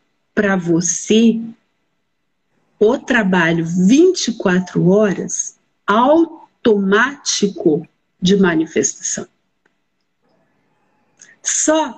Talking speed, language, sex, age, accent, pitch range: 50 wpm, Portuguese, female, 50-69, Brazilian, 185-240 Hz